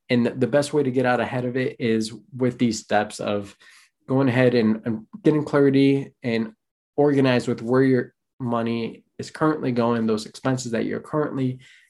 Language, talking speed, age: English, 170 wpm, 20-39